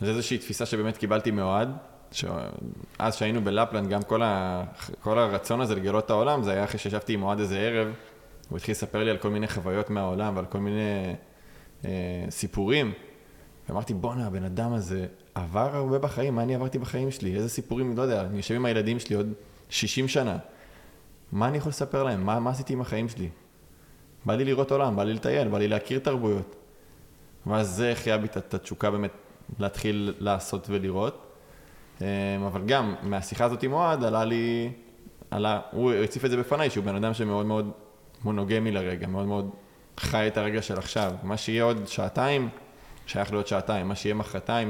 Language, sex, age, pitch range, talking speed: Hebrew, male, 20-39, 100-120 Hz, 175 wpm